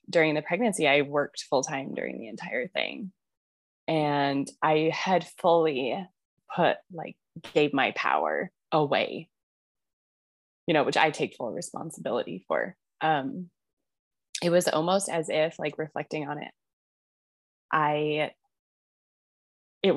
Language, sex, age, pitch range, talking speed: English, female, 20-39, 150-180 Hz, 120 wpm